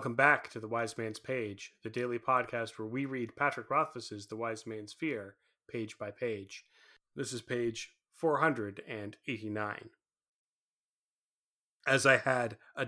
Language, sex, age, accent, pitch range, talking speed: English, male, 30-49, American, 110-155 Hz, 140 wpm